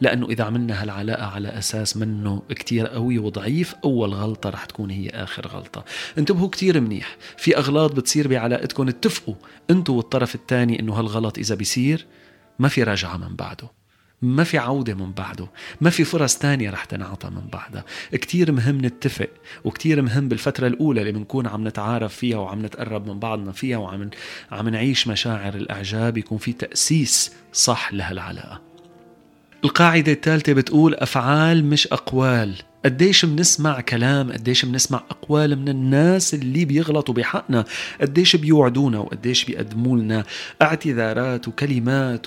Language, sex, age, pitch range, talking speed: Arabic, male, 30-49, 110-150 Hz, 140 wpm